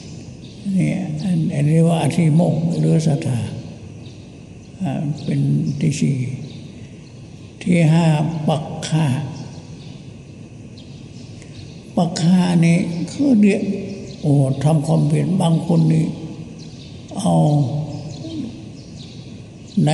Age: 60-79